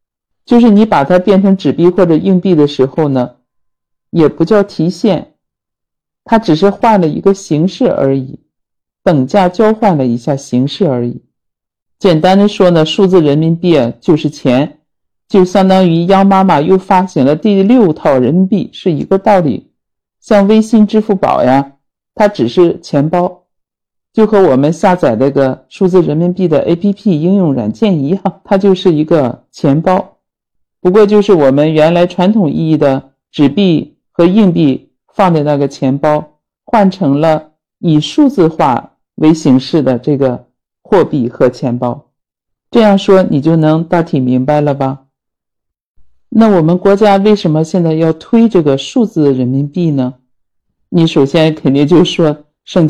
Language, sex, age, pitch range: Chinese, male, 50-69, 145-195 Hz